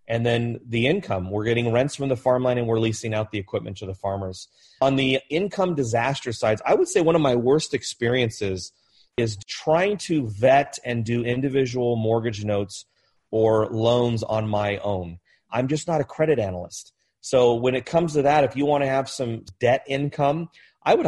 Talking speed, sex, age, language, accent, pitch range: 195 wpm, male, 30-49, English, American, 105-130 Hz